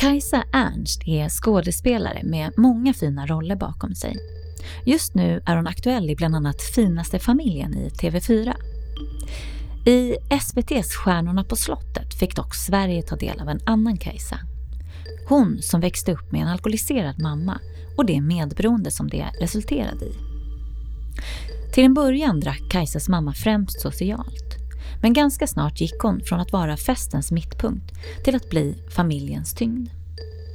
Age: 30-49